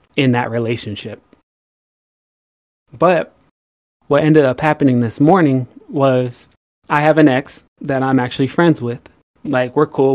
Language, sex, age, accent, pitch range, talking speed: English, male, 20-39, American, 125-145 Hz, 135 wpm